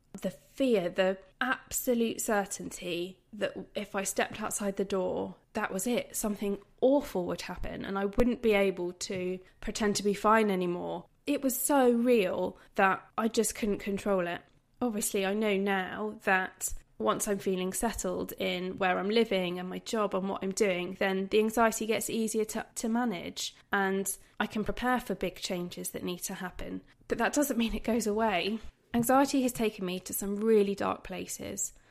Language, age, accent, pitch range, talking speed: English, 20-39, British, 185-220 Hz, 180 wpm